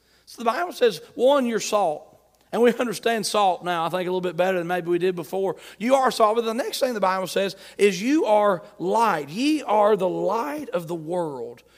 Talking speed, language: 220 wpm, English